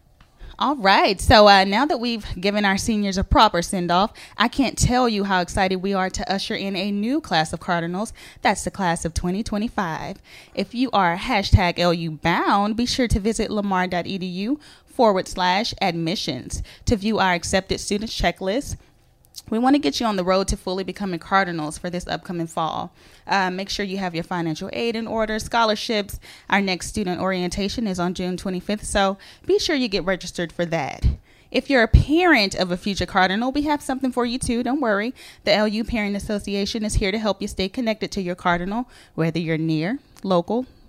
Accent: American